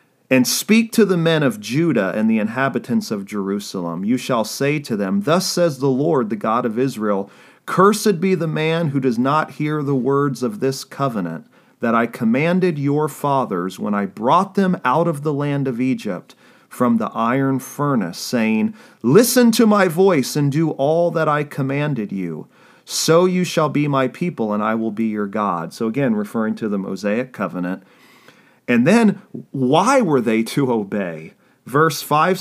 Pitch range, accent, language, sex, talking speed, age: 120-165 Hz, American, English, male, 180 wpm, 40-59